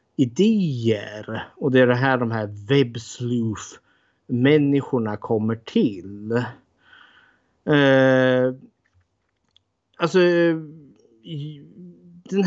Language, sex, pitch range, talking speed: Swedish, male, 110-135 Hz, 70 wpm